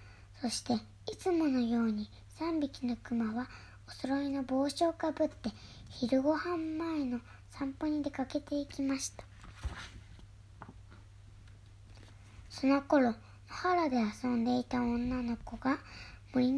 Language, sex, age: Japanese, male, 20-39